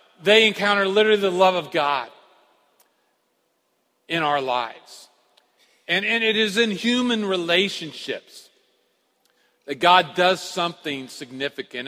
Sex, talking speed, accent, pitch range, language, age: male, 110 wpm, American, 175-215 Hz, English, 50-69